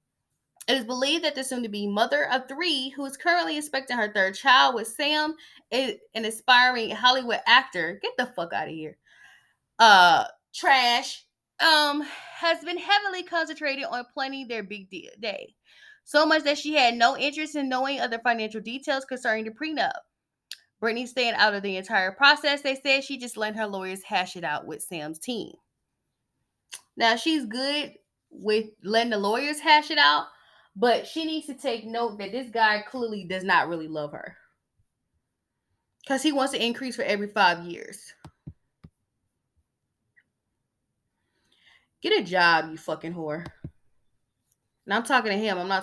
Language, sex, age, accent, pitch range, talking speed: English, female, 20-39, American, 200-290 Hz, 160 wpm